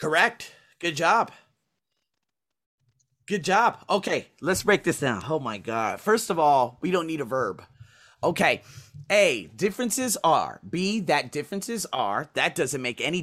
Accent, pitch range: American, 130-170 Hz